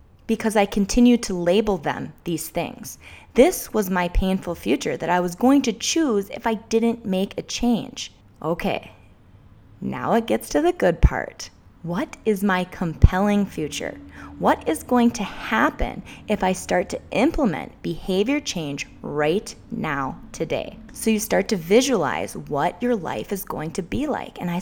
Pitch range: 170-235 Hz